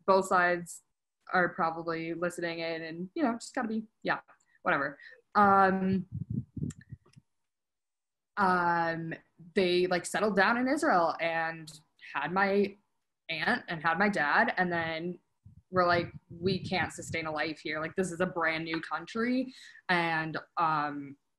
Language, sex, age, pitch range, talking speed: English, female, 20-39, 165-200 Hz, 135 wpm